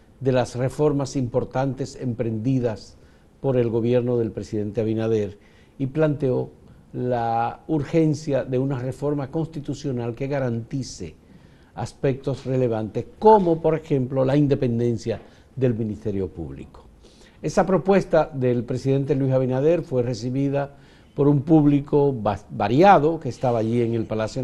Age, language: 50-69, Spanish